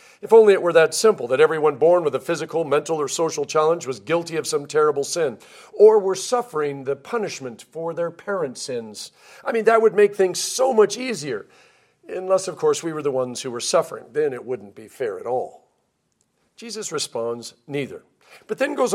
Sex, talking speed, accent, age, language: male, 200 wpm, American, 50-69, English